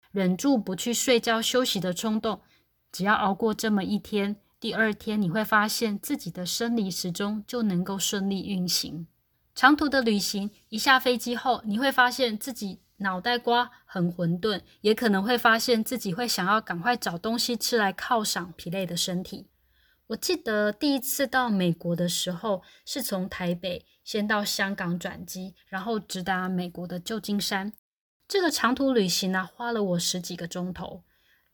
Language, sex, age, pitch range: Chinese, female, 20-39, 185-240 Hz